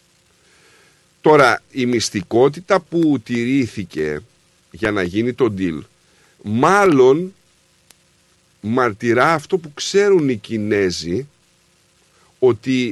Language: Greek